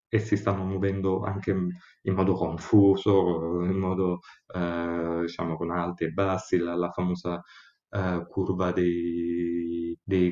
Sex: male